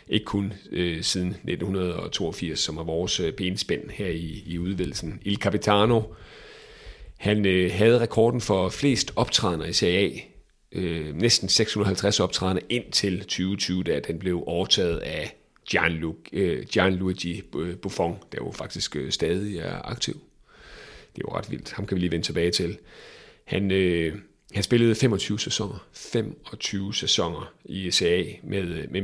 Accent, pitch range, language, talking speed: native, 90-105 Hz, Danish, 140 wpm